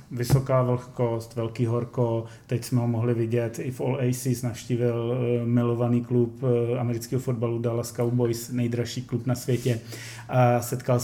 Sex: male